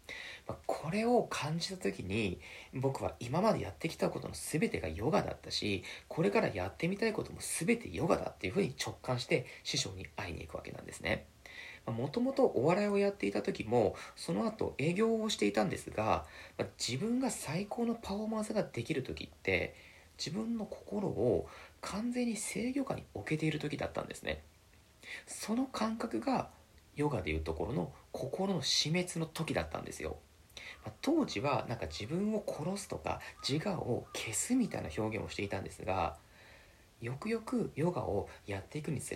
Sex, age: male, 40-59